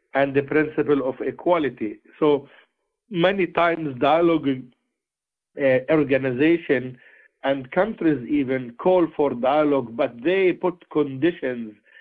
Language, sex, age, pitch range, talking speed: English, male, 50-69, 135-165 Hz, 105 wpm